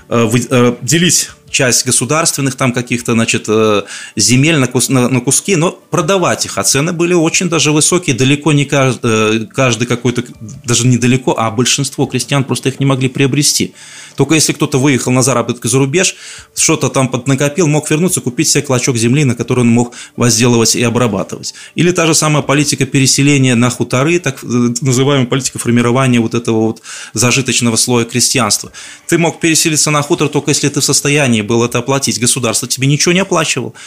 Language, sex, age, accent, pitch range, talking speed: Russian, male, 20-39, native, 120-150 Hz, 165 wpm